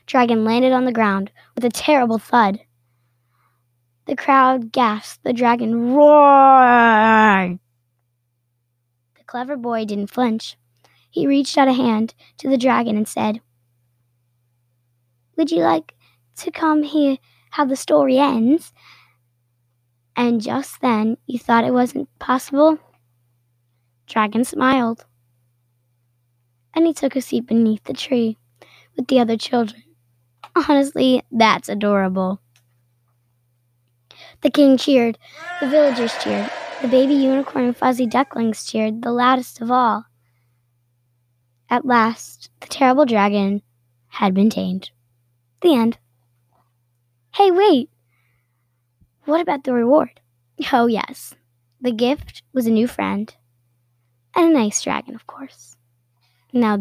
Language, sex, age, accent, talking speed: English, female, 10-29, American, 120 wpm